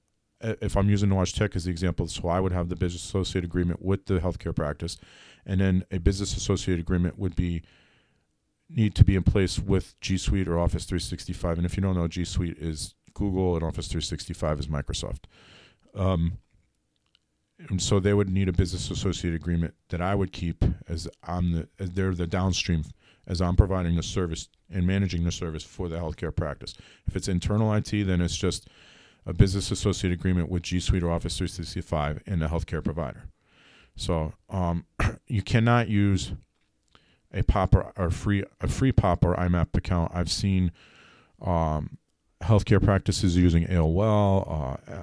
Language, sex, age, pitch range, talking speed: English, male, 40-59, 85-100 Hz, 175 wpm